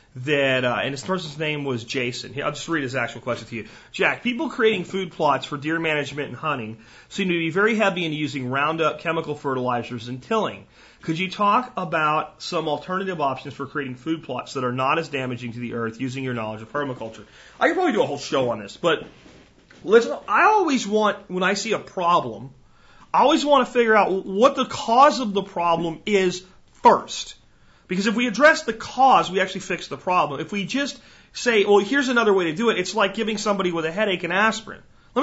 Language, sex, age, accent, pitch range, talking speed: English, male, 40-59, American, 145-220 Hz, 215 wpm